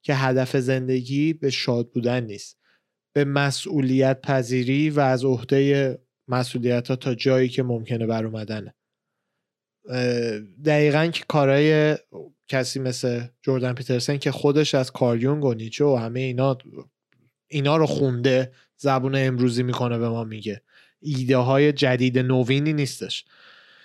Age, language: 20-39, Persian